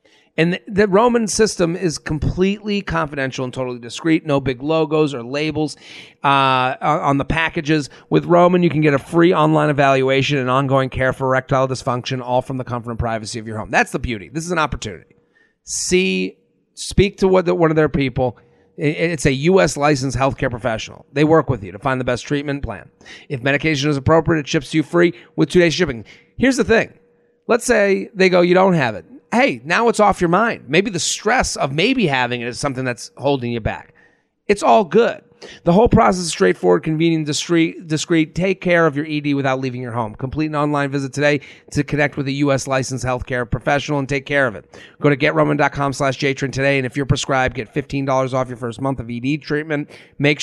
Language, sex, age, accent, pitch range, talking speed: English, male, 40-59, American, 130-160 Hz, 205 wpm